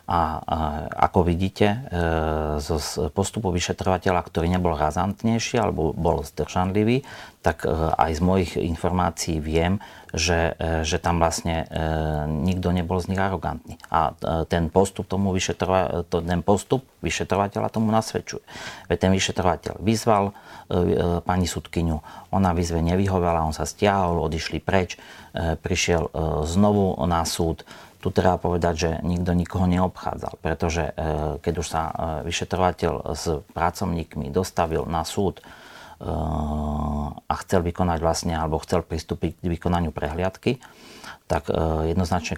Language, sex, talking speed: Slovak, male, 115 wpm